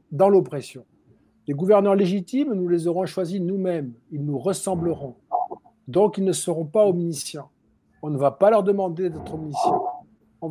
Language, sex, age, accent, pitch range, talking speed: French, male, 50-69, French, 150-205 Hz, 160 wpm